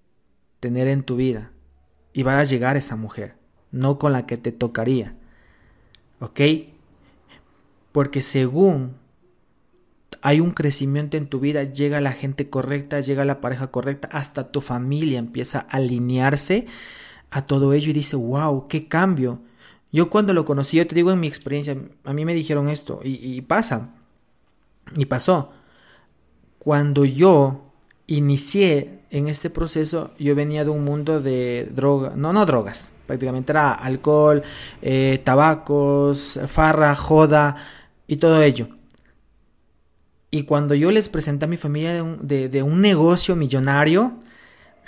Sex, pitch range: male, 135-160 Hz